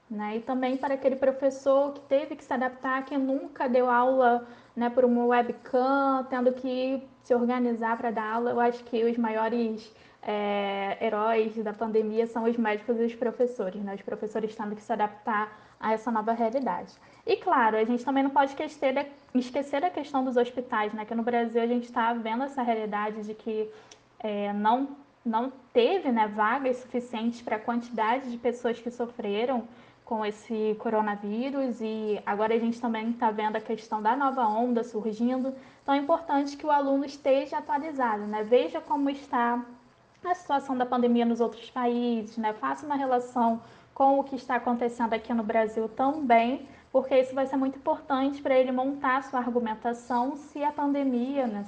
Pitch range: 225-265 Hz